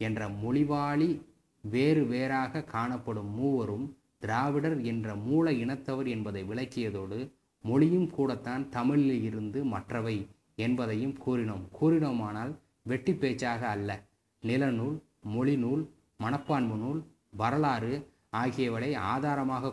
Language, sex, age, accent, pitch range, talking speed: Tamil, male, 20-39, native, 110-145 Hz, 95 wpm